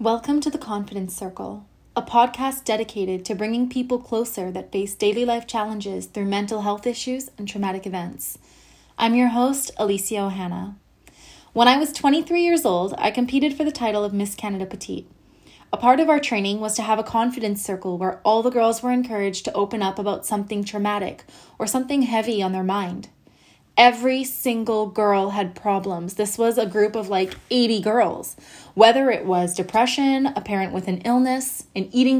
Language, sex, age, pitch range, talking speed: English, female, 20-39, 195-240 Hz, 180 wpm